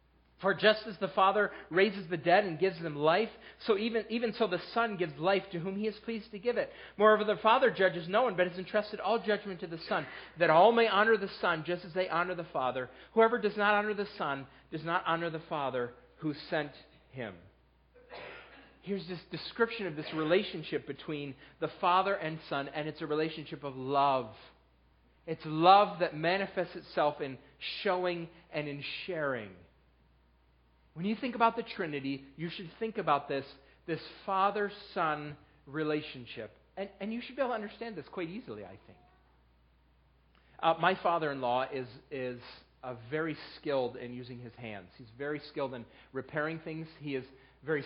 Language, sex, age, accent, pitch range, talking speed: English, male, 40-59, American, 130-190 Hz, 180 wpm